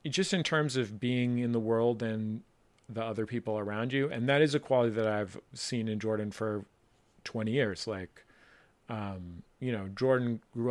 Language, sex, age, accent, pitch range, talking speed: English, male, 40-59, American, 105-125 Hz, 185 wpm